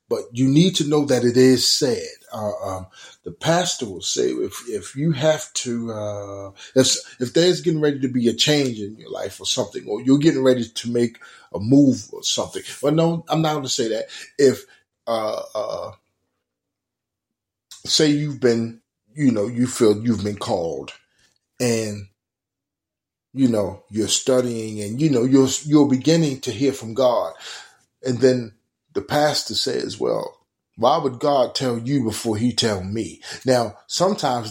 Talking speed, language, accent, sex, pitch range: 170 wpm, English, American, male, 110-140 Hz